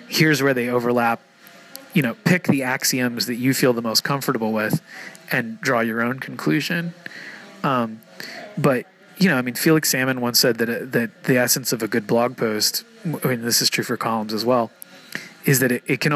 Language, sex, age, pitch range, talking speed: English, male, 30-49, 115-150 Hz, 205 wpm